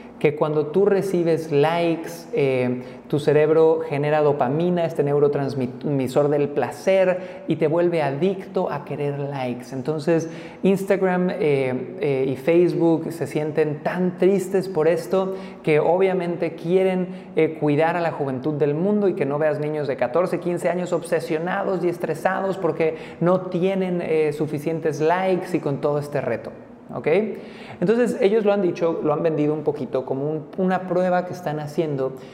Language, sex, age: Spanish, male, 30-49